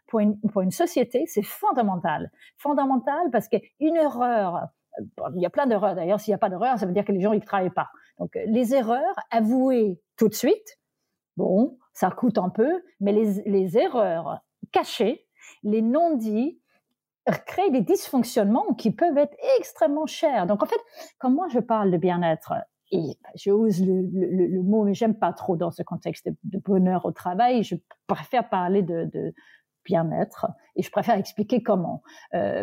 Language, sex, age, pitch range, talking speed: French, female, 40-59, 195-260 Hz, 185 wpm